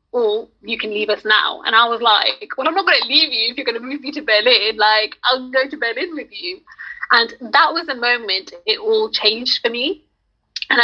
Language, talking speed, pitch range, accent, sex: English, 240 wpm, 225-295 Hz, British, female